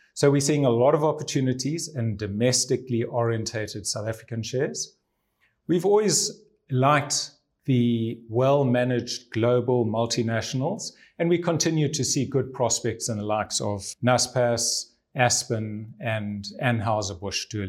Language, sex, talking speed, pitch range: English, male, 125 wpm, 115-145 Hz